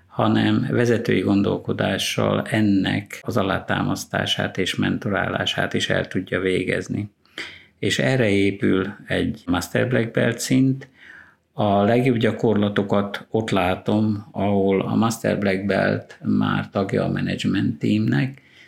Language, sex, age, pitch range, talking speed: Hungarian, male, 50-69, 95-115 Hz, 110 wpm